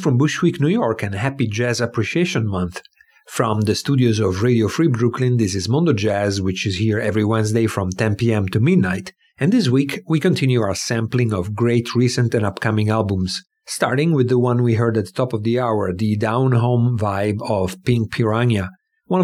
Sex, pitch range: male, 105-130 Hz